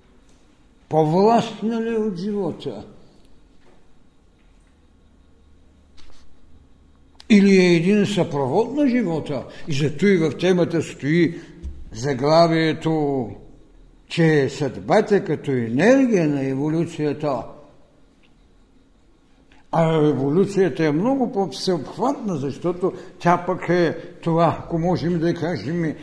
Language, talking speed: Bulgarian, 90 wpm